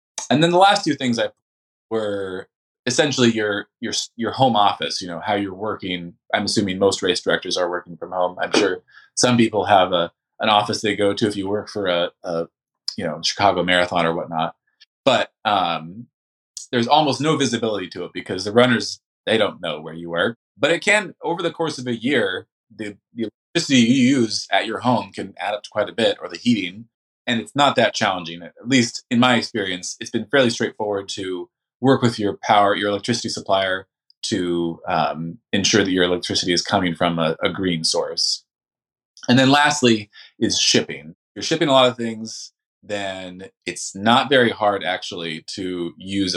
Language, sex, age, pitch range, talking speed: English, male, 20-39, 90-120 Hz, 195 wpm